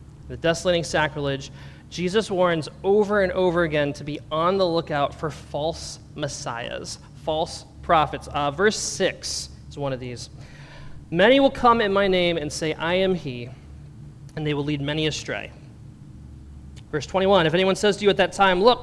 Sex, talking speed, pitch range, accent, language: male, 170 wpm, 135-185 Hz, American, English